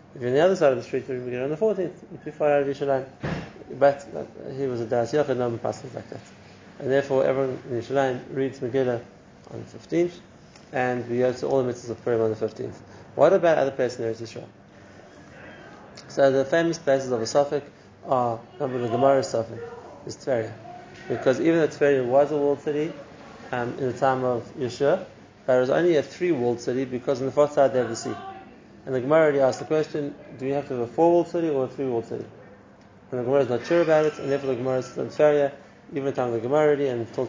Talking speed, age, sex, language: 220 wpm, 30-49, male, English